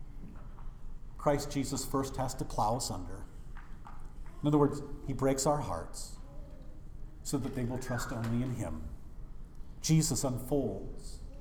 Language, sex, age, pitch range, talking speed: English, male, 50-69, 130-190 Hz, 130 wpm